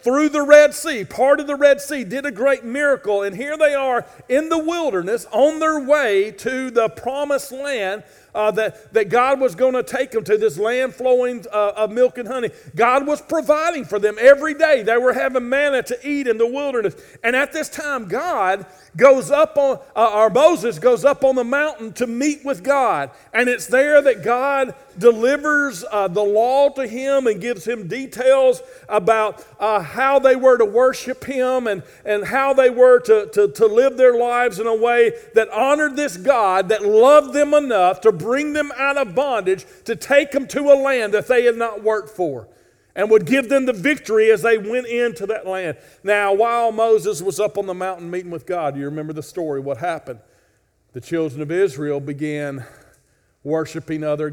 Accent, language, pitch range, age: American, English, 200-280 Hz, 50-69